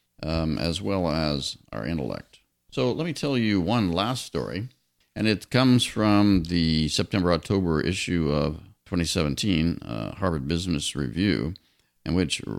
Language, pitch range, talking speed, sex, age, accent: English, 75-100 Hz, 140 wpm, male, 50-69, American